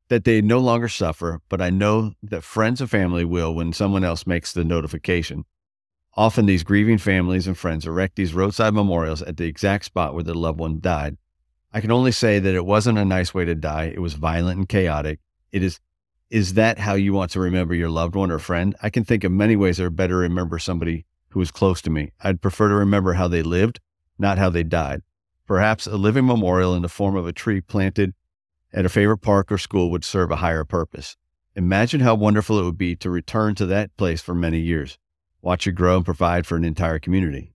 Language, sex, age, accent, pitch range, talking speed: English, male, 40-59, American, 85-100 Hz, 225 wpm